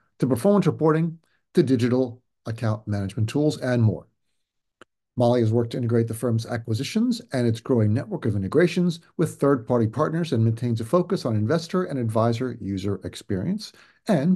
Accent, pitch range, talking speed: American, 105-150 Hz, 160 wpm